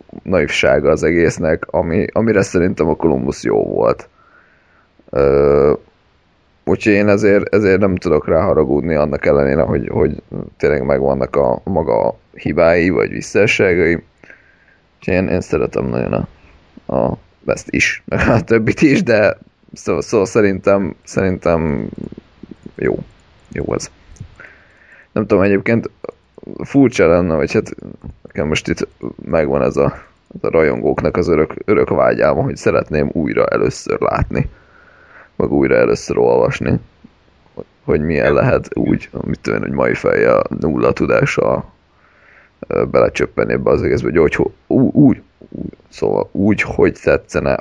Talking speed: 125 wpm